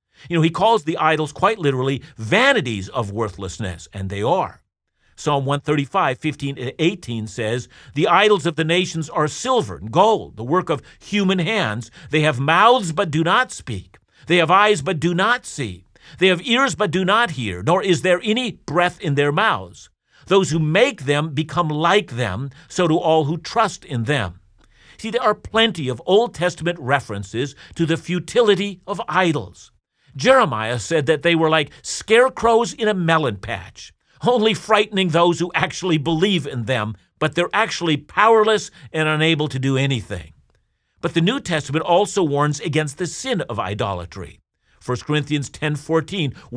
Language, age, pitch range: English, 50-69, 130-185 Hz